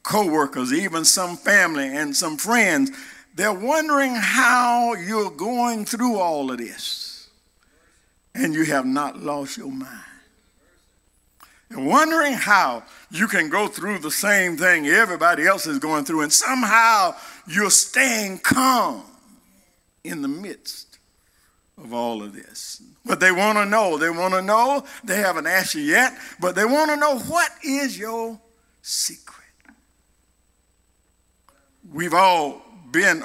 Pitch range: 160-255 Hz